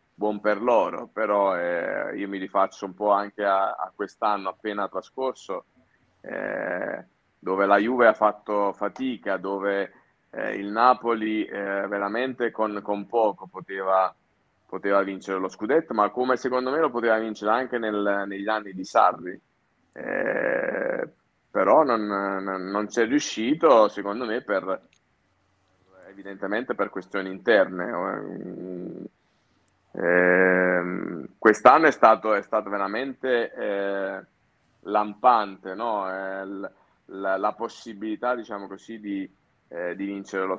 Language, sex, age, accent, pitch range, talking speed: Italian, male, 30-49, native, 95-110 Hz, 130 wpm